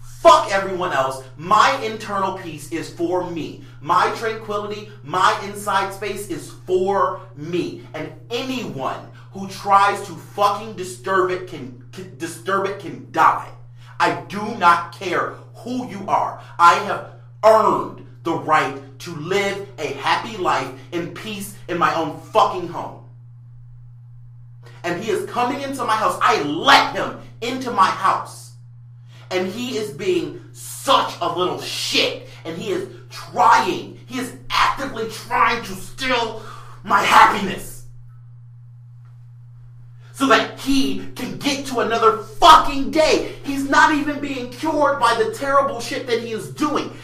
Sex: male